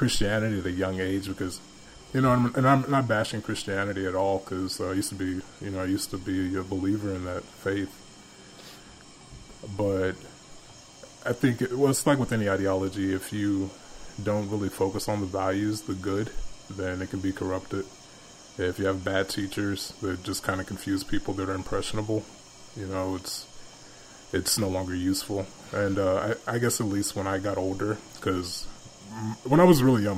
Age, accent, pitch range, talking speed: 20-39, American, 95-110 Hz, 185 wpm